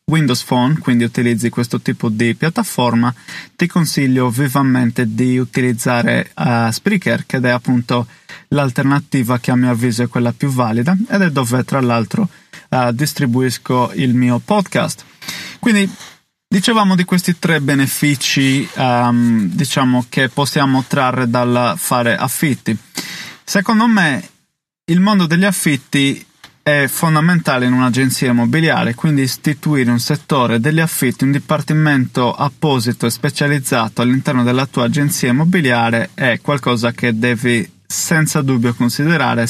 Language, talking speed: Italian, 130 wpm